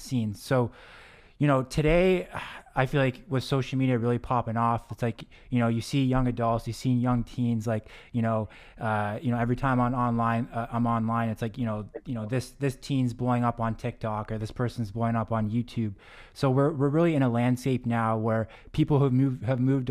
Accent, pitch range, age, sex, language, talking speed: American, 115-130 Hz, 20-39, male, English, 220 wpm